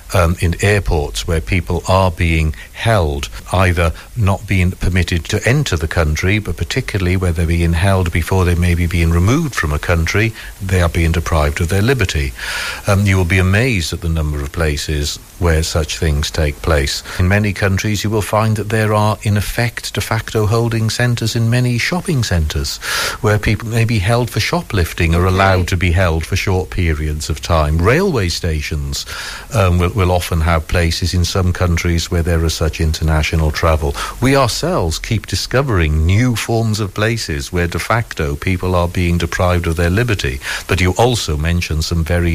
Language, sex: English, male